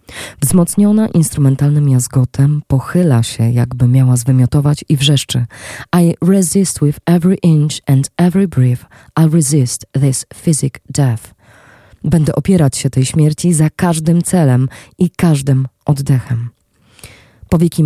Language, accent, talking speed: Polish, native, 120 wpm